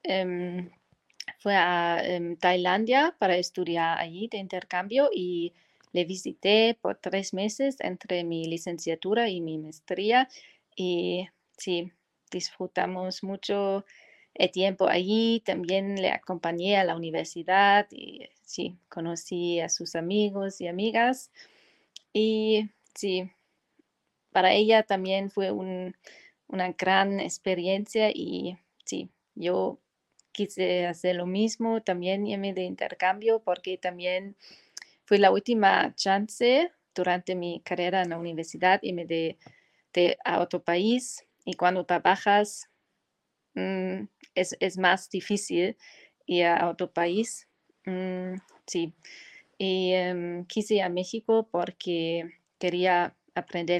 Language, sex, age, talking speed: Spanish, female, 30-49, 115 wpm